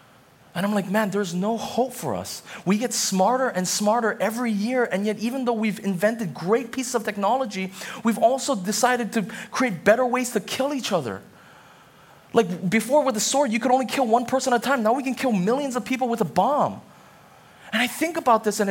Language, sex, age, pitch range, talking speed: English, male, 20-39, 200-265 Hz, 215 wpm